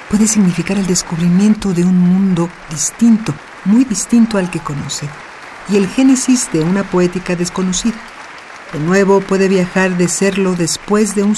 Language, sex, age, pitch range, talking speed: Spanish, female, 50-69, 175-210 Hz, 155 wpm